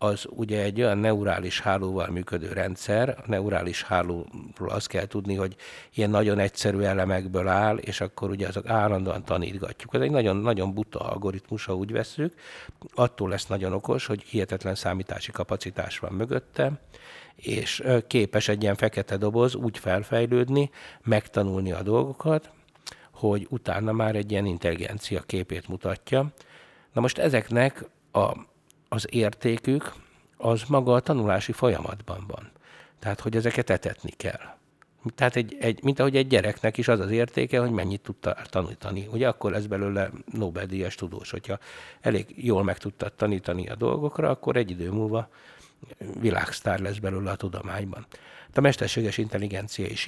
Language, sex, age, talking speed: Hungarian, male, 60-79, 145 wpm